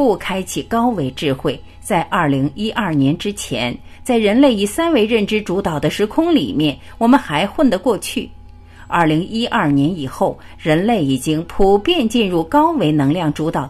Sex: female